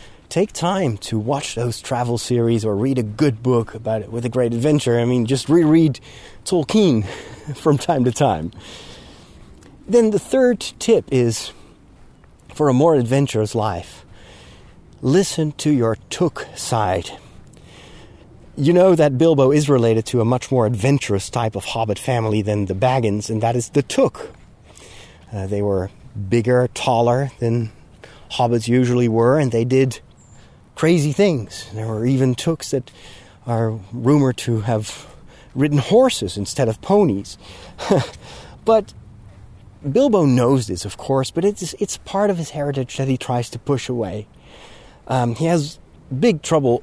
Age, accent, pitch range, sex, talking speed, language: 30-49, American, 110-150 Hz, male, 150 wpm, English